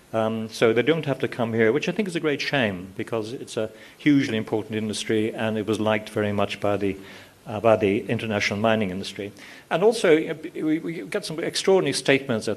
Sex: male